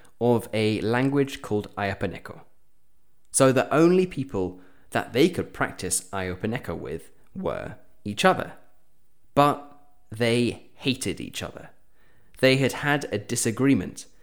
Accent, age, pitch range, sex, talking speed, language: British, 20-39, 100-135 Hz, male, 120 wpm, English